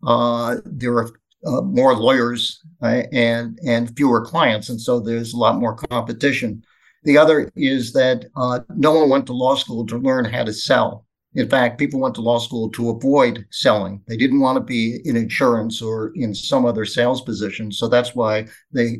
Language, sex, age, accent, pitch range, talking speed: English, male, 50-69, American, 115-140 Hz, 190 wpm